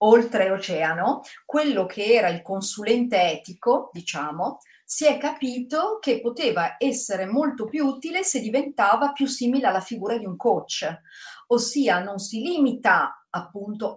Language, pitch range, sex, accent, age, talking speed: Italian, 180-275 Hz, female, native, 40-59, 140 wpm